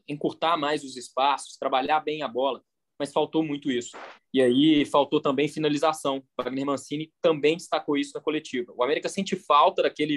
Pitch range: 130-155 Hz